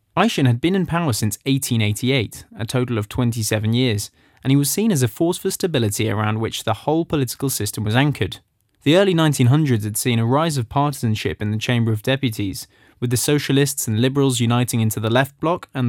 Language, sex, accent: English, male, British